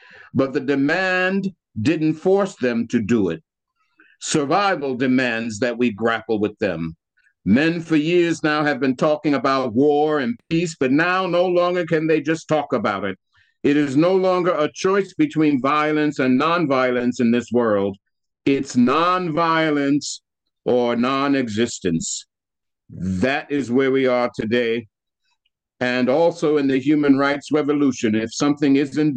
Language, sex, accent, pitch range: English, male, American, 125-165 Hz